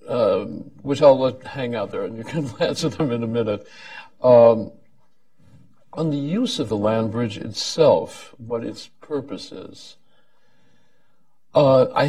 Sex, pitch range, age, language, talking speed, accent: male, 110-135 Hz, 60-79, English, 150 wpm, American